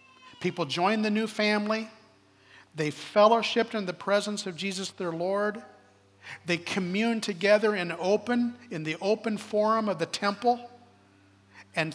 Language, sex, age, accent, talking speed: English, male, 50-69, American, 135 wpm